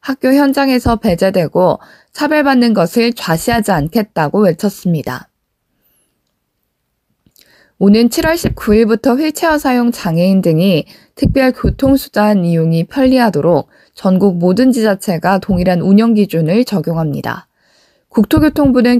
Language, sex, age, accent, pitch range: Korean, female, 20-39, native, 180-250 Hz